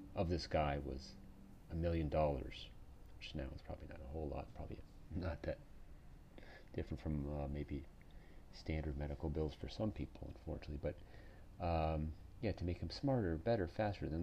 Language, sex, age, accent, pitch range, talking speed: English, male, 40-59, American, 75-100 Hz, 165 wpm